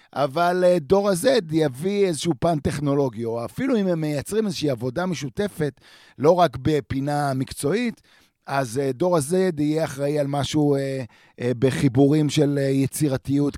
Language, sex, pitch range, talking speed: Hebrew, male, 120-165 Hz, 130 wpm